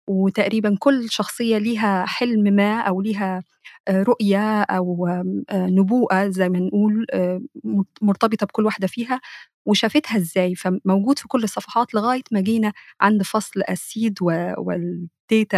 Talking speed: 120 wpm